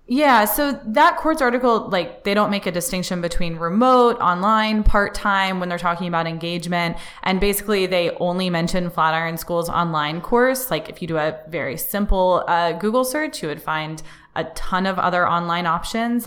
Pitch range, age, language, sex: 165-205 Hz, 20-39, English, female